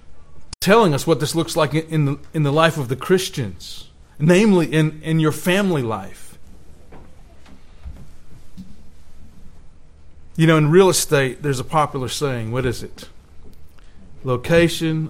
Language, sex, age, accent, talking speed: English, male, 40-59, American, 125 wpm